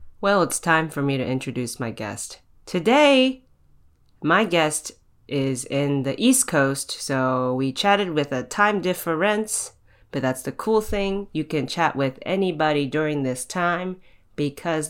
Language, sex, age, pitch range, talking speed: English, female, 30-49, 135-180 Hz, 155 wpm